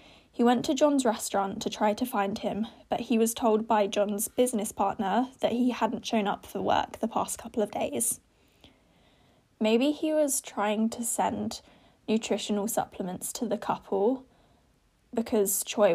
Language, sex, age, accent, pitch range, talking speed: English, female, 10-29, British, 205-240 Hz, 160 wpm